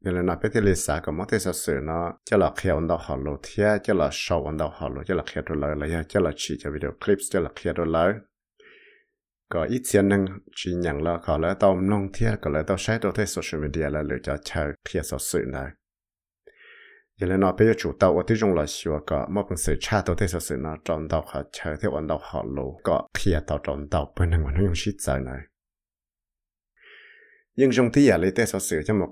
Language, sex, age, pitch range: English, male, 60-79, 80-100 Hz